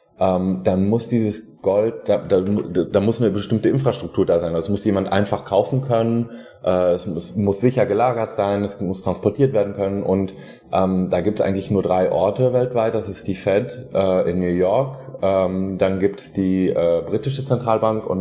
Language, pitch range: German, 90-110 Hz